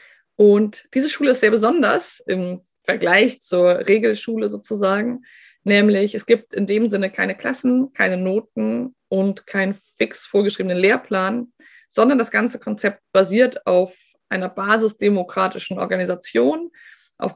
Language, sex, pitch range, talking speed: German, female, 190-235 Hz, 125 wpm